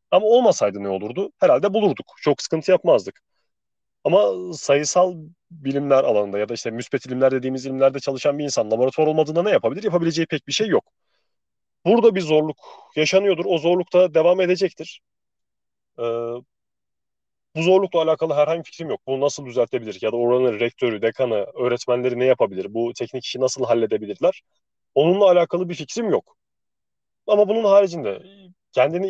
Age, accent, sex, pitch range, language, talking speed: 30-49, native, male, 130-175 Hz, Turkish, 150 wpm